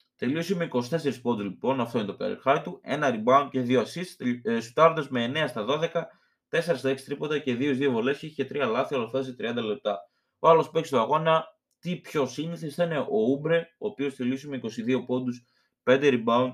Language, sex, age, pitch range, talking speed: Greek, male, 20-39, 120-155 Hz, 200 wpm